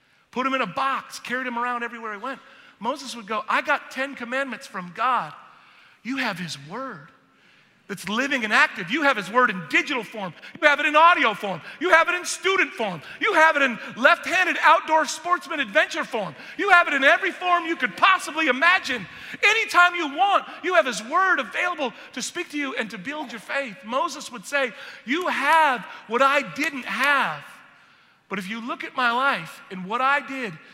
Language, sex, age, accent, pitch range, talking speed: English, male, 40-59, American, 195-285 Hz, 200 wpm